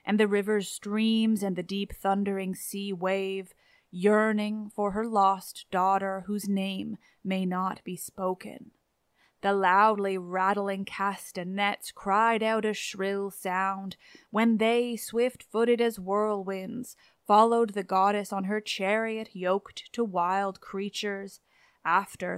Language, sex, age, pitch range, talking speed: English, female, 20-39, 190-225 Hz, 125 wpm